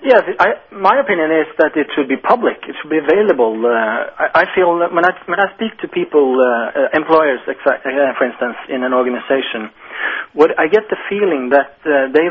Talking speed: 195 wpm